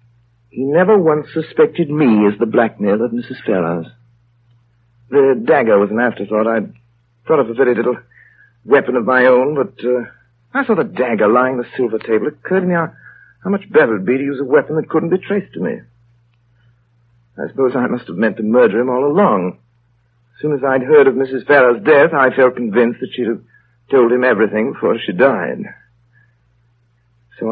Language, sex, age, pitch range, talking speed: English, male, 60-79, 120-155 Hz, 195 wpm